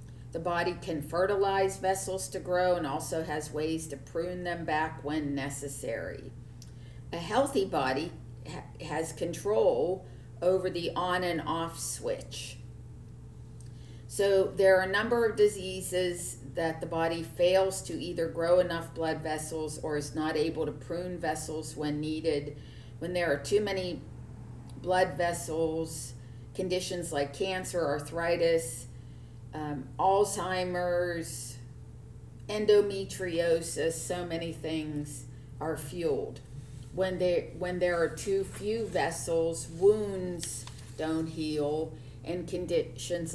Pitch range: 125-175 Hz